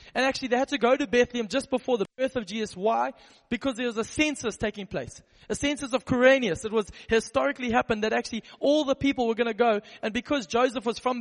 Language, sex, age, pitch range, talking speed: English, male, 20-39, 225-270 Hz, 235 wpm